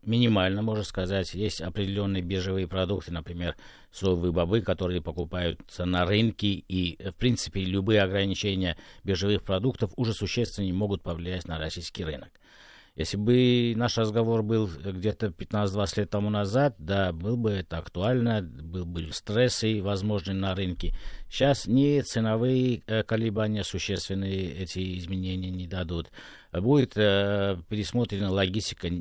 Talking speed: 130 wpm